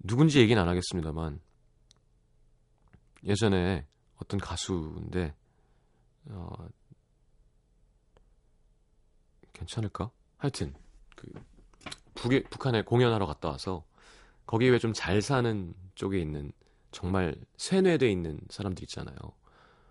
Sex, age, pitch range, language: male, 30-49, 90-140 Hz, Korean